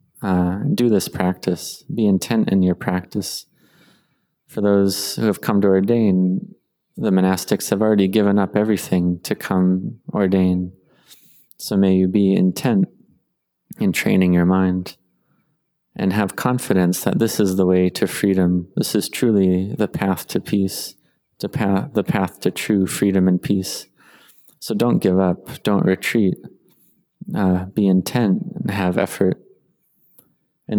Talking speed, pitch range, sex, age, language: 145 wpm, 90-100 Hz, male, 20-39, English